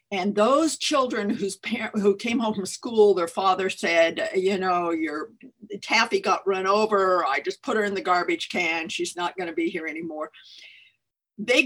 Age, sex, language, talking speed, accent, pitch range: 50-69, female, English, 185 wpm, American, 195-260 Hz